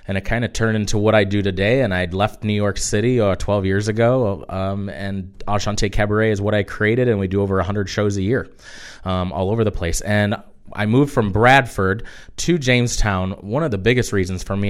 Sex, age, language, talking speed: male, 30-49, English, 220 wpm